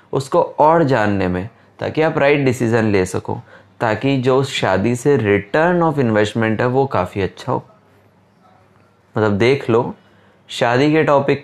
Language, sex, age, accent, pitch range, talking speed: Hindi, male, 20-39, native, 105-130 Hz, 150 wpm